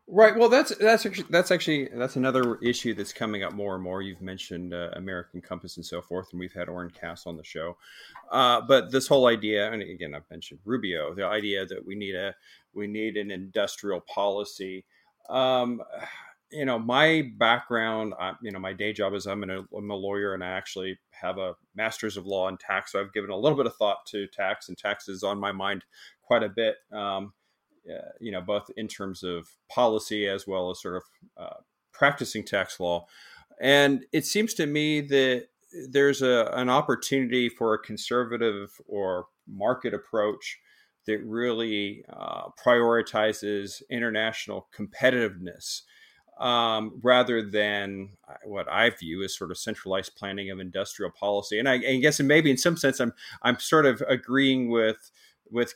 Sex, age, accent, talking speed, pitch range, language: male, 30-49, American, 180 wpm, 100-130 Hz, English